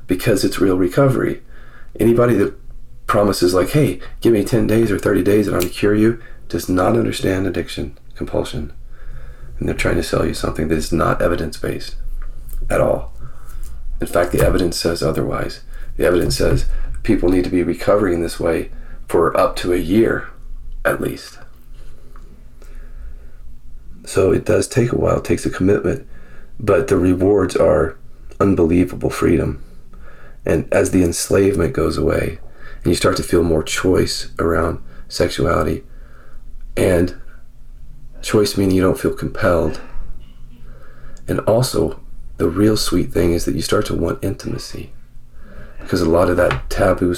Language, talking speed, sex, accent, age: Swedish, 150 wpm, male, American, 40-59